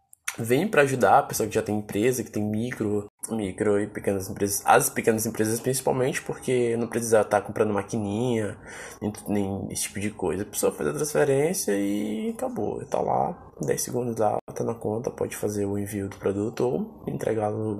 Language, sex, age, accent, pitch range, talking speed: Portuguese, male, 20-39, Brazilian, 100-120 Hz, 185 wpm